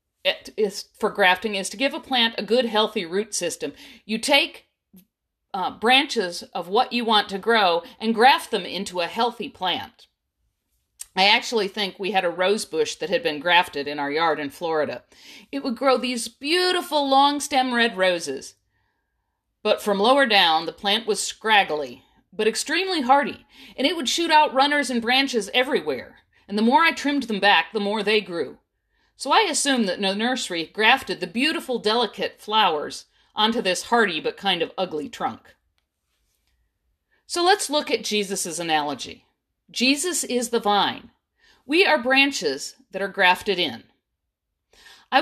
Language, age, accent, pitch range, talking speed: English, 50-69, American, 195-275 Hz, 165 wpm